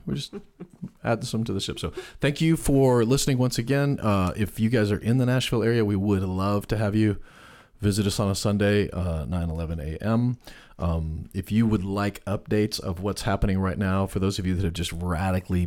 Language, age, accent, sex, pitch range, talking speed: English, 40-59, American, male, 85-105 Hz, 220 wpm